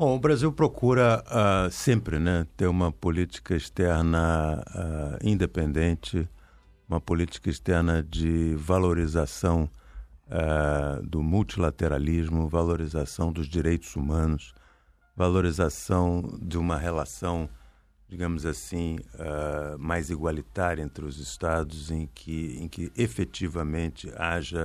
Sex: male